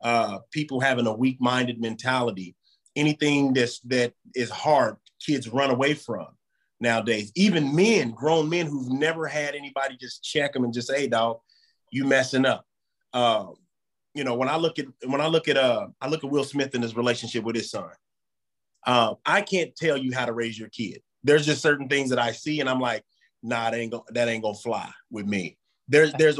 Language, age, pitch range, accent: English, 30-49, 120-145 Hz, American